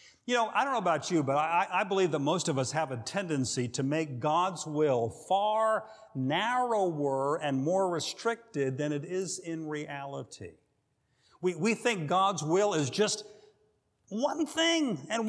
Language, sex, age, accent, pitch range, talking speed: English, male, 50-69, American, 125-200 Hz, 165 wpm